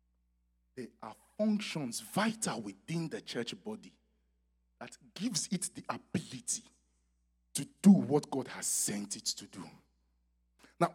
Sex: male